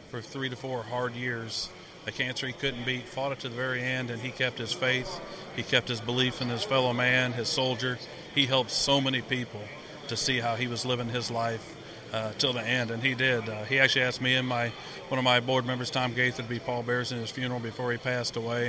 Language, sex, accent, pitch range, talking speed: English, male, American, 115-130 Hz, 245 wpm